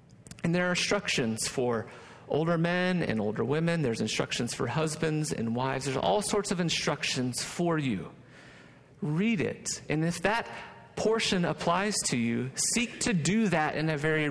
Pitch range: 135-185 Hz